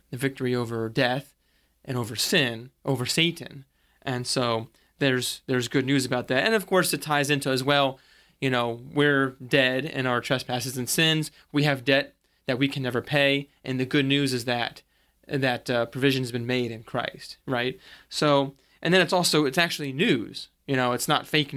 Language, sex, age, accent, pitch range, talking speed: English, male, 20-39, American, 125-145 Hz, 195 wpm